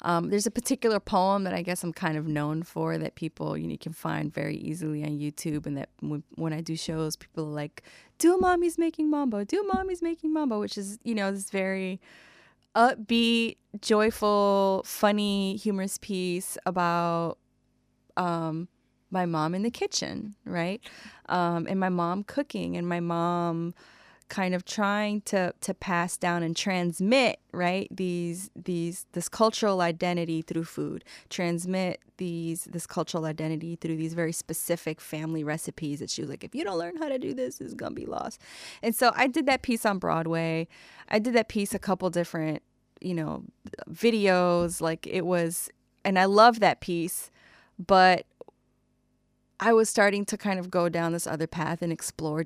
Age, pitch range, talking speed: 20-39, 165-205 Hz, 175 wpm